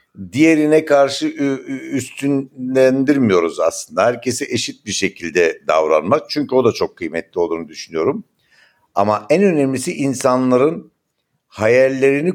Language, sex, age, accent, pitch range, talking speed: Turkish, male, 60-79, native, 120-145 Hz, 100 wpm